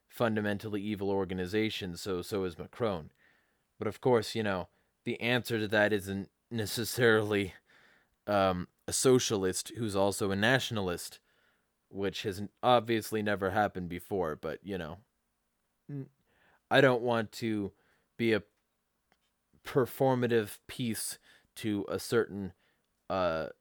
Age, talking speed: 20-39, 115 wpm